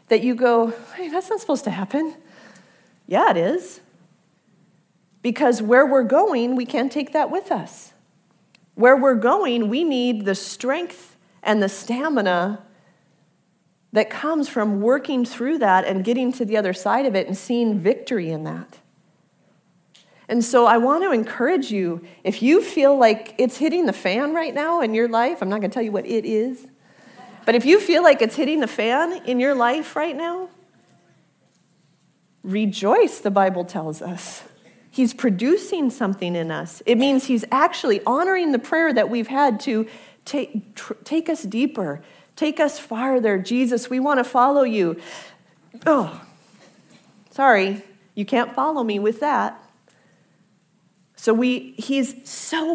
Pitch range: 195-270 Hz